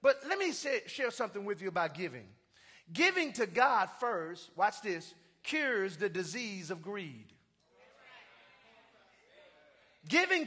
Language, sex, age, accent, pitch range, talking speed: English, male, 40-59, American, 230-310 Hz, 120 wpm